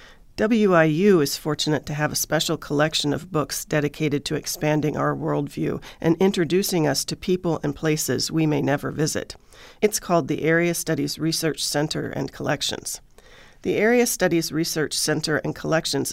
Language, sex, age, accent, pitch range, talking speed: English, female, 40-59, American, 145-175 Hz, 155 wpm